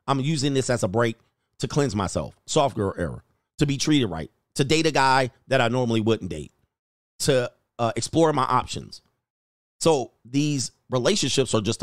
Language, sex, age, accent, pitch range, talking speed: English, male, 40-59, American, 115-150 Hz, 180 wpm